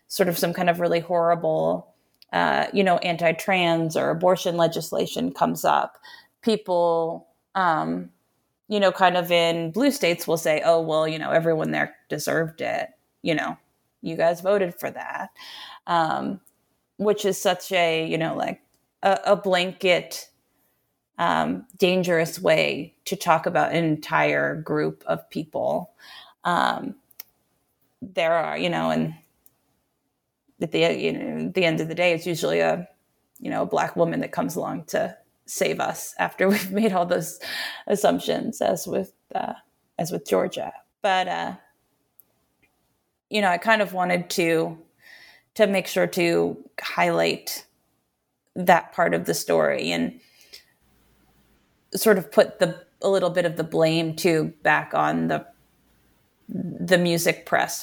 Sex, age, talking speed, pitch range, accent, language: female, 20-39, 150 wpm, 165-190 Hz, American, English